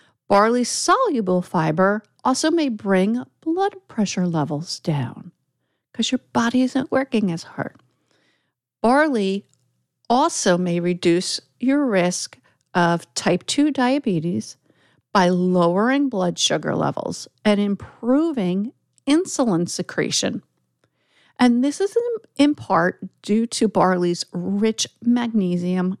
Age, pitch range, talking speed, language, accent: 50-69, 175-255 Hz, 105 wpm, English, American